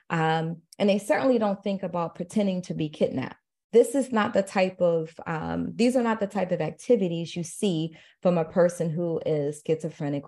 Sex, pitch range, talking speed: female, 165-215 Hz, 195 wpm